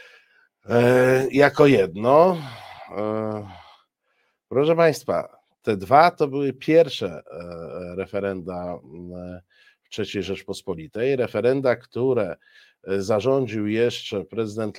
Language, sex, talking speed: Polish, male, 75 wpm